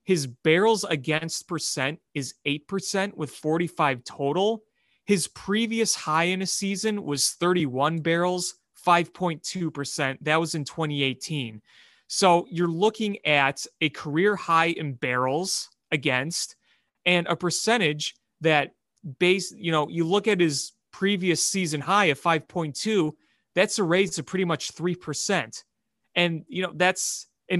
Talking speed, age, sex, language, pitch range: 135 wpm, 30-49, male, English, 150-190 Hz